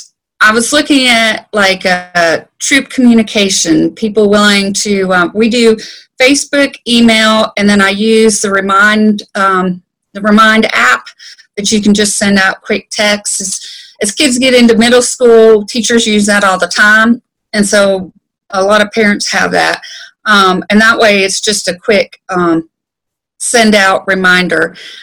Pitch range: 200-245 Hz